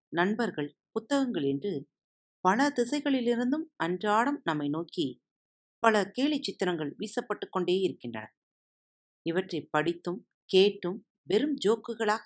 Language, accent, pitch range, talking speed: Tamil, native, 155-225 Hz, 95 wpm